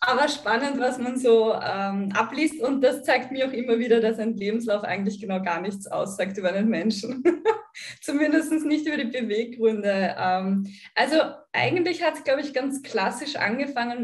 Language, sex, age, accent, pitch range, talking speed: German, female, 20-39, German, 210-250 Hz, 170 wpm